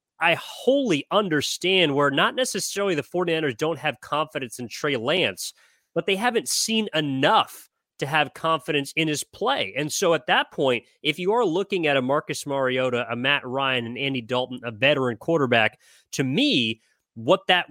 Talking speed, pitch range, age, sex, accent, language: 175 wpm, 125-160 Hz, 30-49, male, American, English